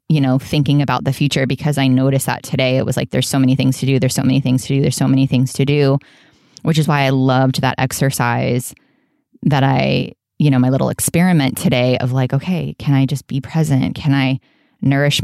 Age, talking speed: 20-39, 230 wpm